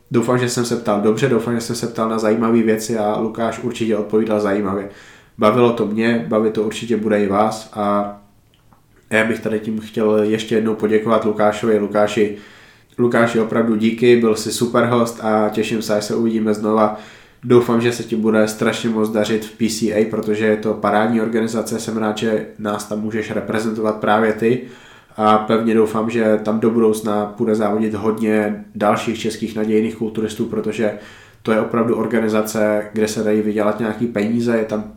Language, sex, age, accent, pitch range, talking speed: Czech, male, 20-39, native, 105-115 Hz, 180 wpm